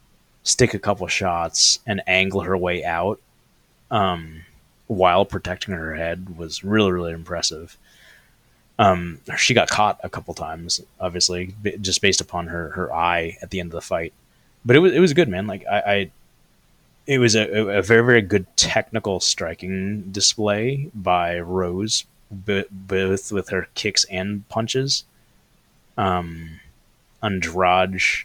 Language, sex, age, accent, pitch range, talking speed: English, male, 20-39, American, 85-105 Hz, 150 wpm